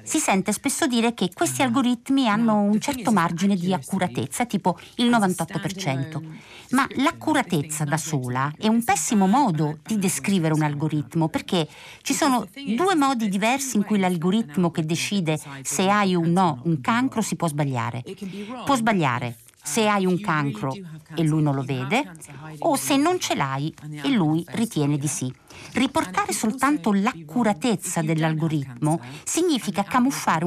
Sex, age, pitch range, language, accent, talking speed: female, 50-69, 155-225 Hz, Italian, native, 150 wpm